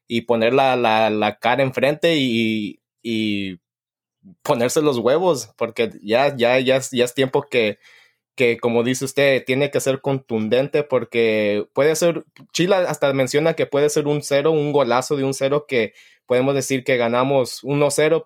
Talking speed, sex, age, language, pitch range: 170 wpm, male, 20-39, Spanish, 120-140 Hz